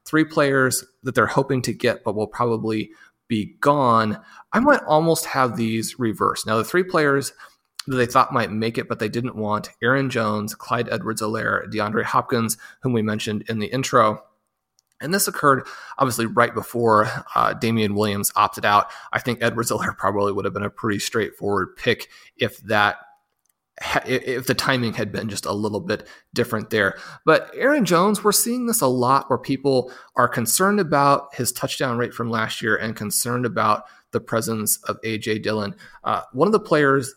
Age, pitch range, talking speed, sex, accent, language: 30-49, 110-140 Hz, 180 wpm, male, American, English